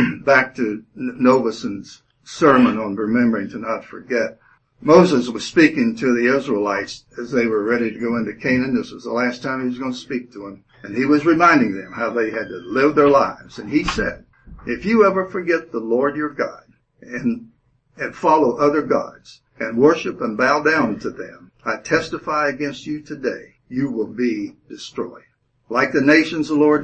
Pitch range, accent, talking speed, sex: 120-145 Hz, American, 190 wpm, male